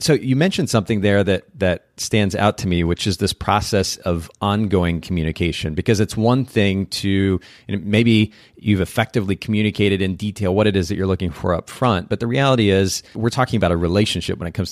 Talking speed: 210 wpm